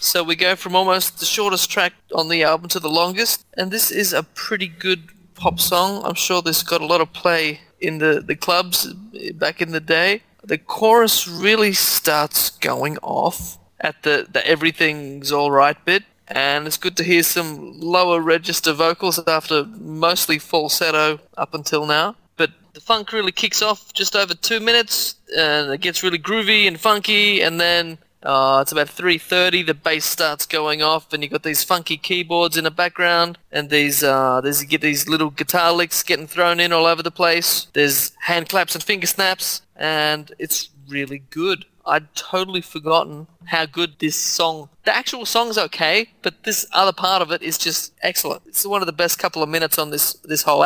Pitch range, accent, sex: 155-190 Hz, Australian, male